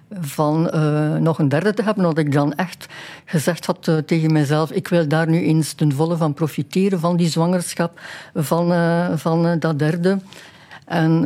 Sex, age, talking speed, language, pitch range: female, 60-79, 180 wpm, Dutch, 155-185 Hz